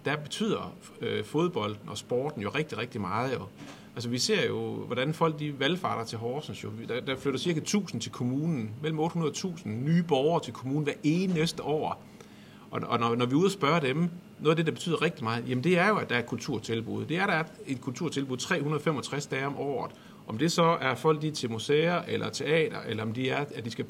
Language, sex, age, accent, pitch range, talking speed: Danish, male, 40-59, native, 120-155 Hz, 230 wpm